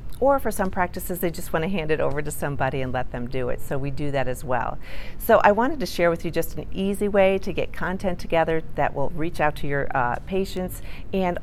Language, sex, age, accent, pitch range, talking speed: English, female, 40-59, American, 140-175 Hz, 250 wpm